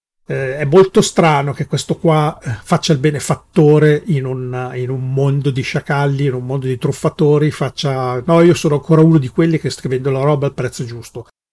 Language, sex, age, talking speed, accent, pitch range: Italian, male, 40-59, 185 wpm, native, 130-165 Hz